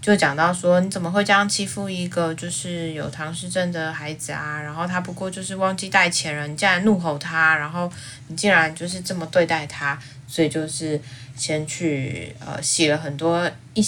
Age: 20-39